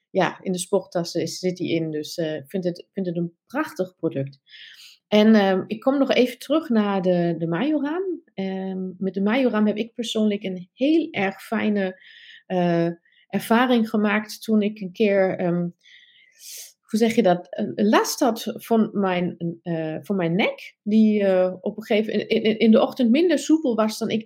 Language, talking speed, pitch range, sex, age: Dutch, 185 wpm, 180-225 Hz, female, 30-49